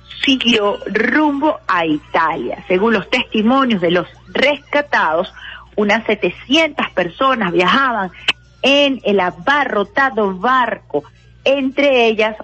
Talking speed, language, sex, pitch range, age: 95 wpm, Spanish, female, 190-255 Hz, 40-59